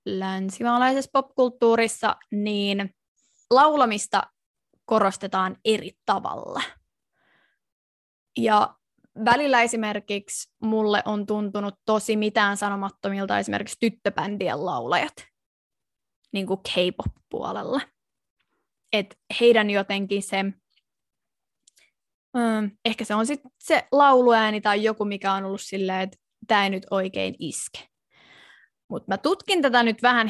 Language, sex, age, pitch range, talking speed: Finnish, female, 20-39, 195-240 Hz, 95 wpm